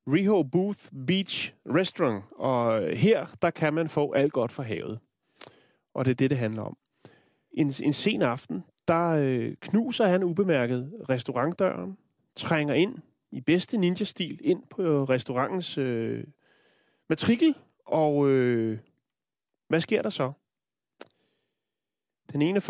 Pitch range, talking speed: 130-180 Hz, 125 wpm